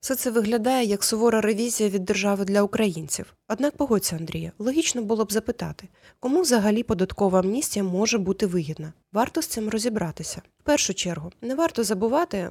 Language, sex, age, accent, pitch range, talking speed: Ukrainian, female, 20-39, native, 195-245 Hz, 165 wpm